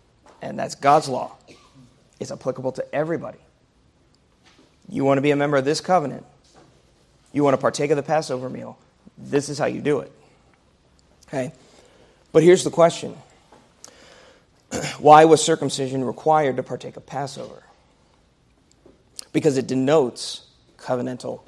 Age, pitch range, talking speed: 30-49, 130-150 Hz, 135 wpm